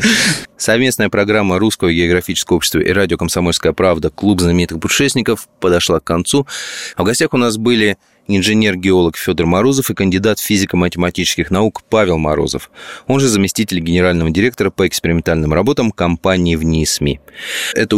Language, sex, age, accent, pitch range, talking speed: Russian, male, 20-39, native, 85-110 Hz, 140 wpm